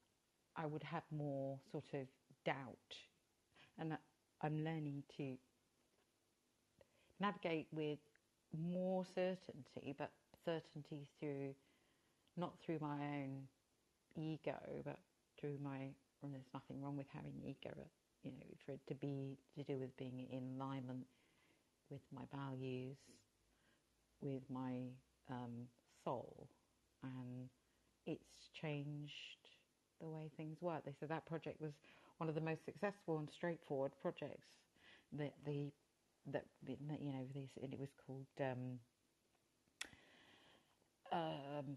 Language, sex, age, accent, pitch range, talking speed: English, female, 50-69, British, 130-155 Hz, 120 wpm